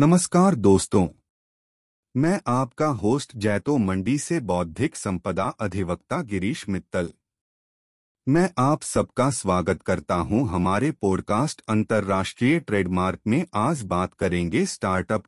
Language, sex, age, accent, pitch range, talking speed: Hindi, male, 30-49, native, 95-125 Hz, 110 wpm